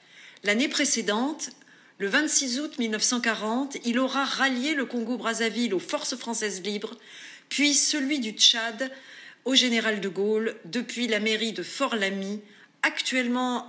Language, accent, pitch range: French, French, 205-270 Hz